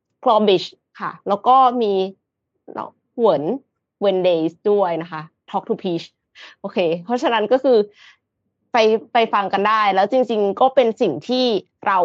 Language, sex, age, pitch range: Thai, female, 20-39, 185-235 Hz